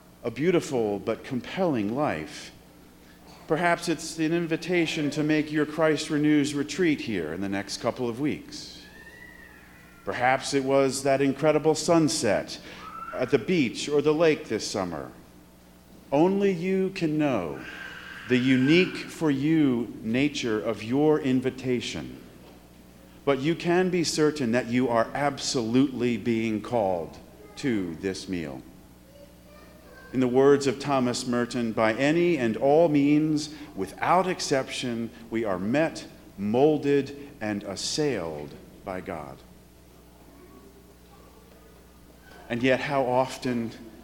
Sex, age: male, 40-59